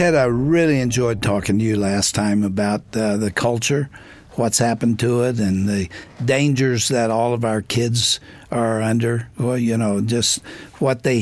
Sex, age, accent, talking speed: male, 60-79, American, 175 wpm